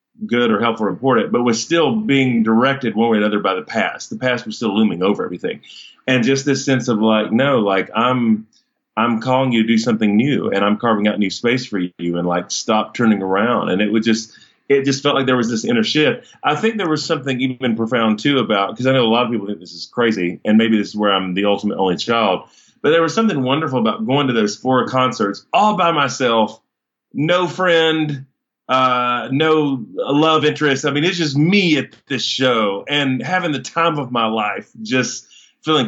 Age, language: 30-49, English